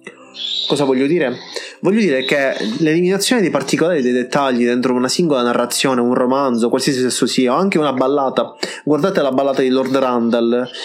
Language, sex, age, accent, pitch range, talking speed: Italian, male, 20-39, native, 130-175 Hz, 165 wpm